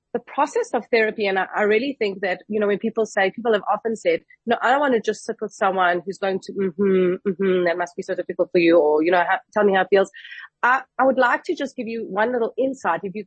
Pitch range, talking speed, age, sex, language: 200-245 Hz, 275 wpm, 30-49, female, English